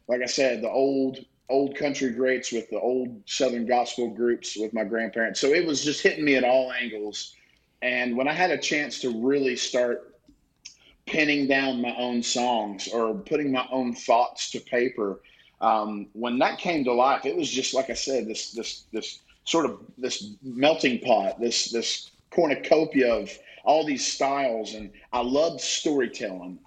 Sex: male